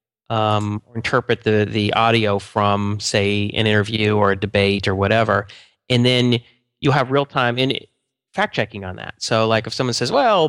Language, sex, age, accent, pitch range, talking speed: English, male, 30-49, American, 110-130 Hz, 170 wpm